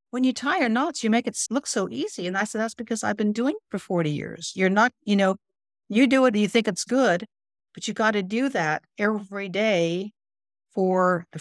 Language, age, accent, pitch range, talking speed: English, 50-69, American, 160-210 Hz, 235 wpm